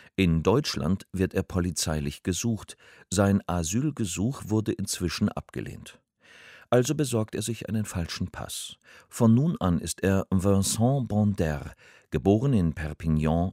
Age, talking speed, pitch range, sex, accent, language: 50-69, 125 wpm, 80-105 Hz, male, German, German